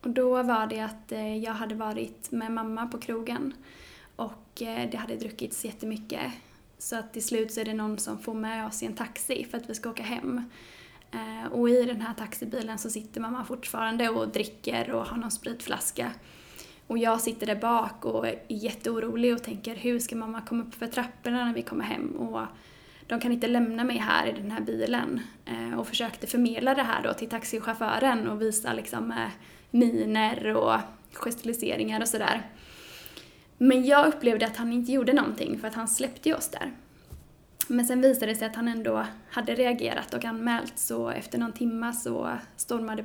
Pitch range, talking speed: 220-245 Hz, 185 wpm